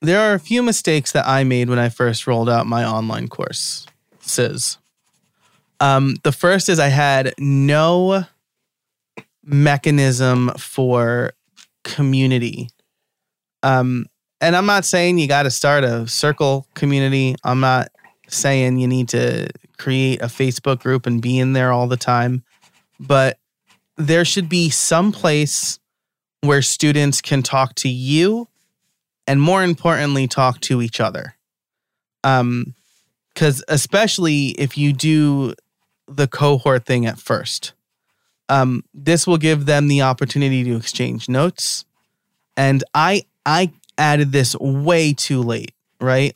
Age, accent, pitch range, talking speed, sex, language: 20-39, American, 130-155 Hz, 135 wpm, male, English